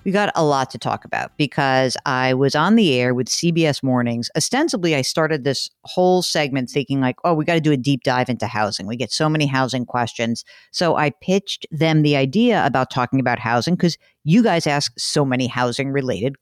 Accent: American